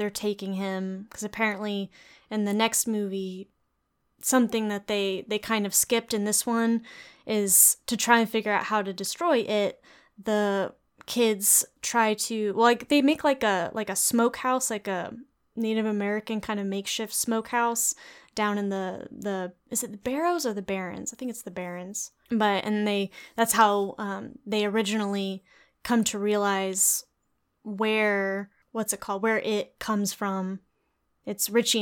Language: English